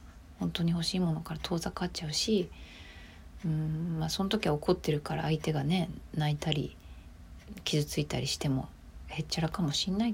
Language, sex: Japanese, female